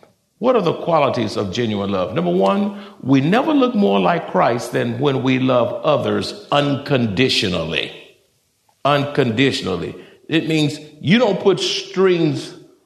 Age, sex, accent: 60-79, male, American